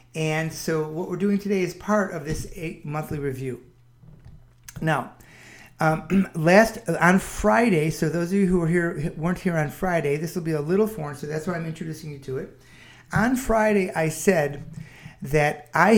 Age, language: 40-59, English